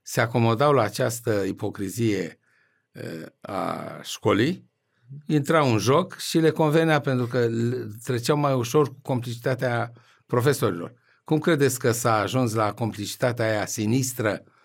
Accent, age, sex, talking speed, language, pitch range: native, 60-79, male, 125 wpm, Romanian, 115-145 Hz